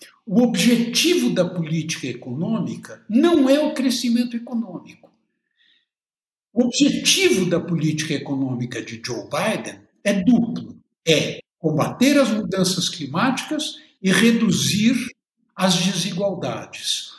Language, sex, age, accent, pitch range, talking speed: Portuguese, male, 60-79, Brazilian, 145-235 Hz, 100 wpm